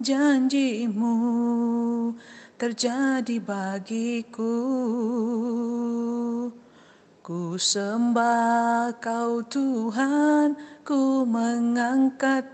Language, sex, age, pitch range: Malay, female, 30-49, 235-280 Hz